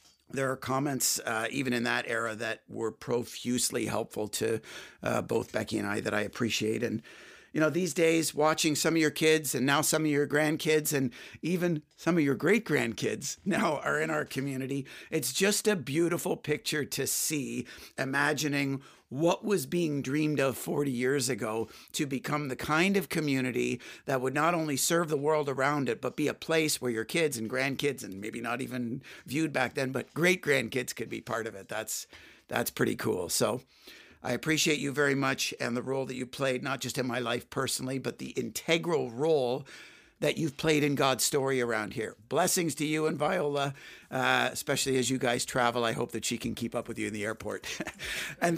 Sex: male